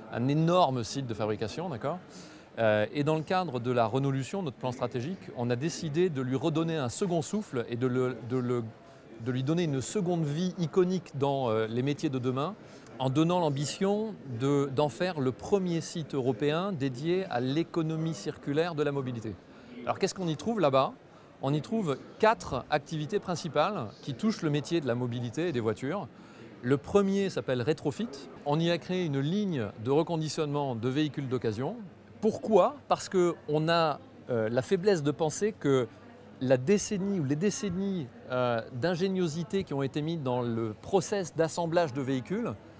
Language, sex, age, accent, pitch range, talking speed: French, male, 40-59, French, 130-175 Hz, 175 wpm